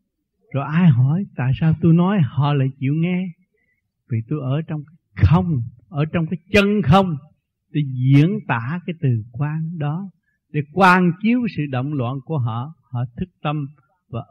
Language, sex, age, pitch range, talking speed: Vietnamese, male, 60-79, 130-165 Hz, 170 wpm